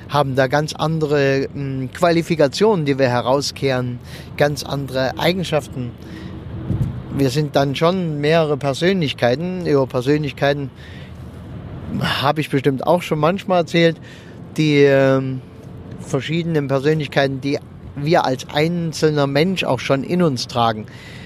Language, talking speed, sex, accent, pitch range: German, 110 wpm, male, German, 135-170 Hz